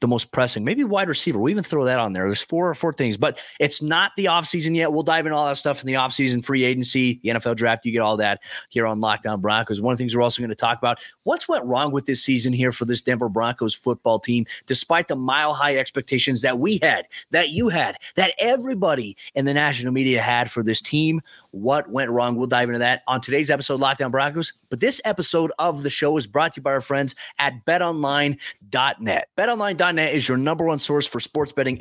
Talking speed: 240 wpm